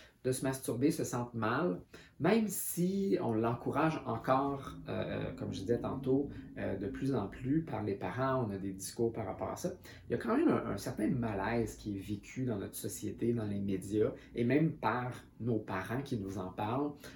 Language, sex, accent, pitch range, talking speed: French, male, Canadian, 105-125 Hz, 205 wpm